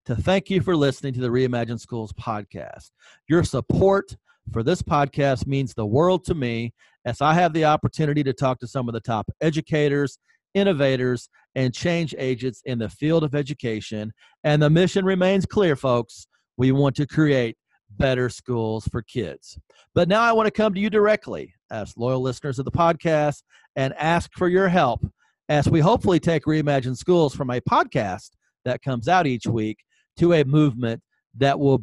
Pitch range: 125-175 Hz